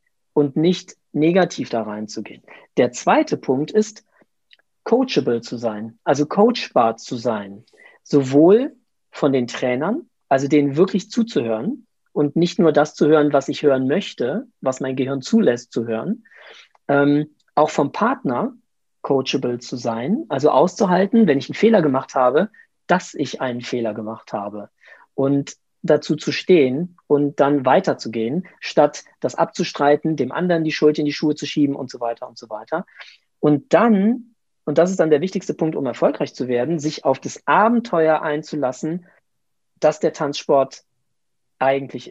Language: German